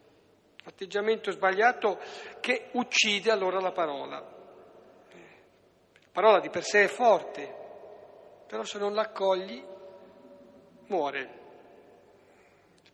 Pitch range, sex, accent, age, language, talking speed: 165-220 Hz, male, native, 60-79, Italian, 95 wpm